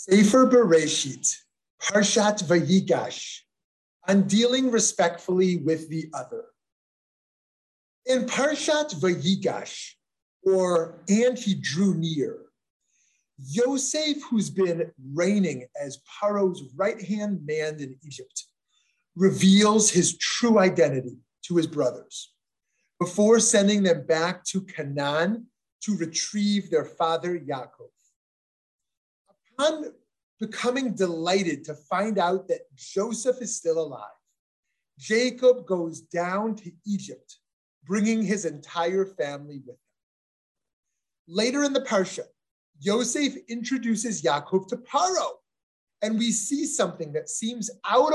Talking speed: 105 wpm